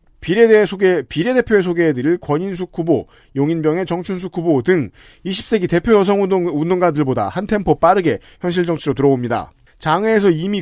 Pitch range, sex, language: 145-185 Hz, male, Korean